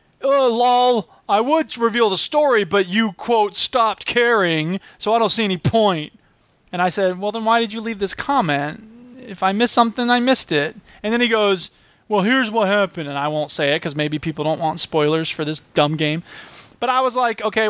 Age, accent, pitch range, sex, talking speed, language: 20-39, American, 170-230 Hz, male, 215 wpm, English